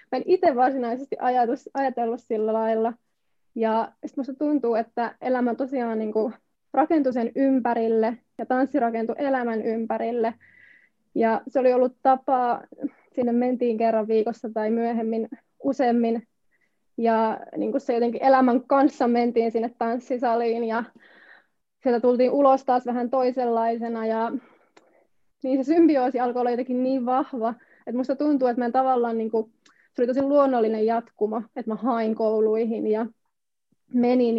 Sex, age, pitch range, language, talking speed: female, 20-39, 230-255 Hz, Finnish, 140 wpm